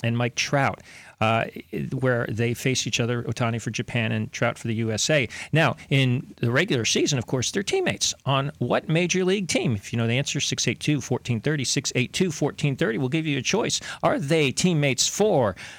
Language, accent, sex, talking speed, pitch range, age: English, American, male, 180 wpm, 115-150 Hz, 40-59